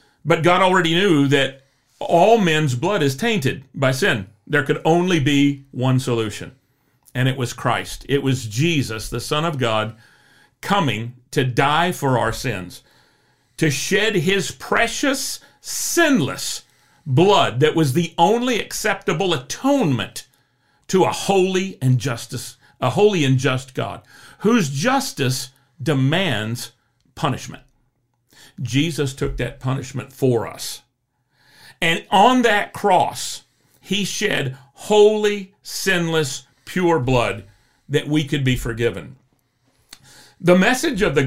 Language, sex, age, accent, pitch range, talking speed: English, male, 50-69, American, 125-170 Hz, 125 wpm